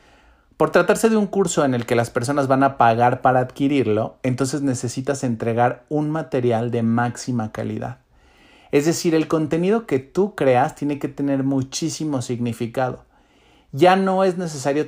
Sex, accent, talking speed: male, Mexican, 155 wpm